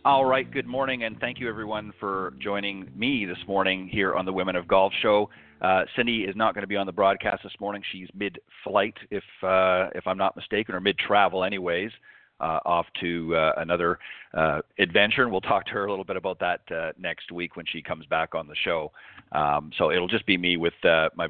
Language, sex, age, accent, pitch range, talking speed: English, male, 40-59, American, 85-100 Hz, 225 wpm